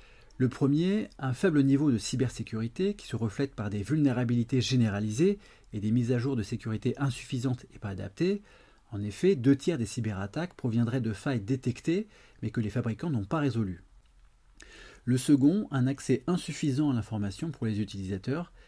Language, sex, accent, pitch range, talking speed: French, male, French, 110-140 Hz, 165 wpm